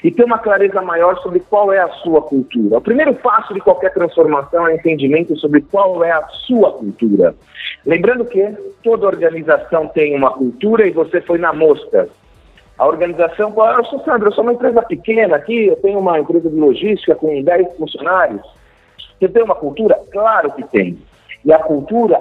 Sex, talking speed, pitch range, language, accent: male, 180 wpm, 150-215 Hz, Portuguese, Brazilian